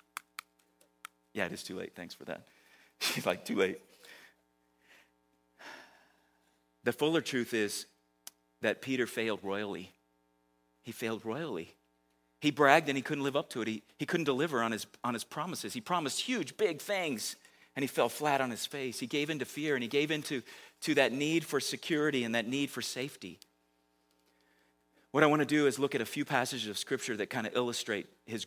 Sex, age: male, 40-59